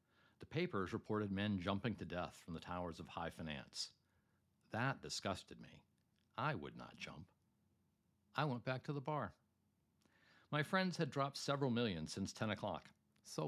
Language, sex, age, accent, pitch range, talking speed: English, male, 60-79, American, 90-120 Hz, 160 wpm